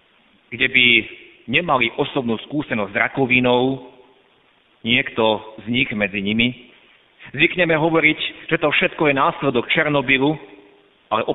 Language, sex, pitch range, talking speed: Slovak, male, 120-155 Hz, 110 wpm